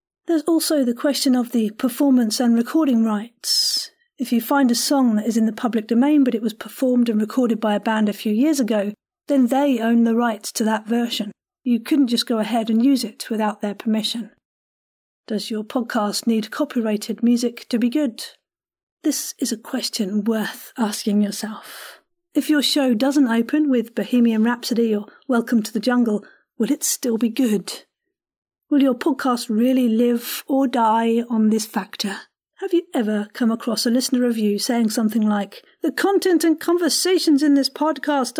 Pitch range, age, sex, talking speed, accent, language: 225-285 Hz, 40-59, female, 180 wpm, British, English